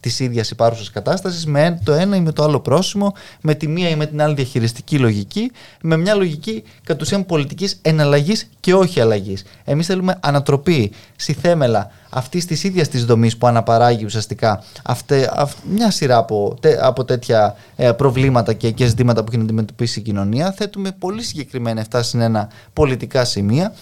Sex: male